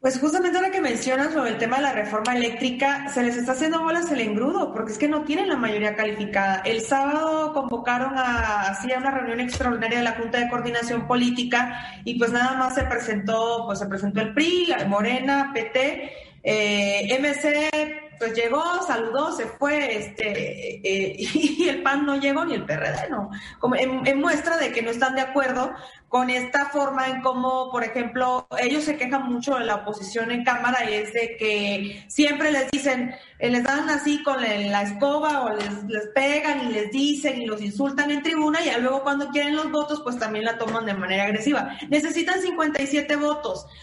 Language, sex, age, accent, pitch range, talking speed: Spanish, female, 30-49, Mexican, 240-295 Hz, 190 wpm